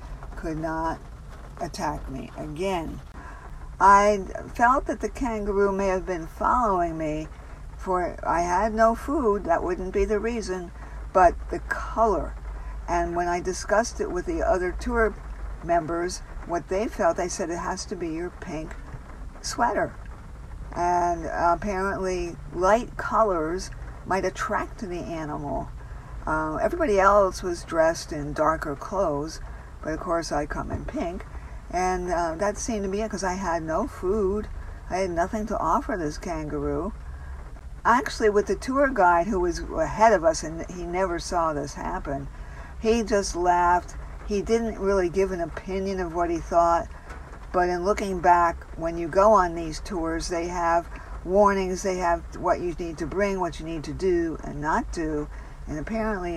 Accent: American